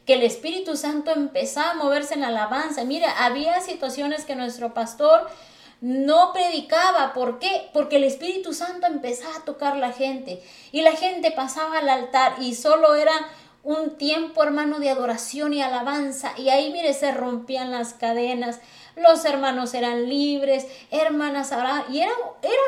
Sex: female